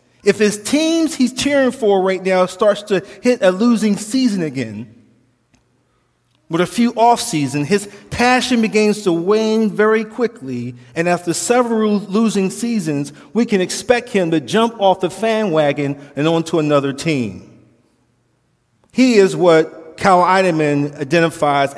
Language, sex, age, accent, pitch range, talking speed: English, male, 40-59, American, 160-215 Hz, 145 wpm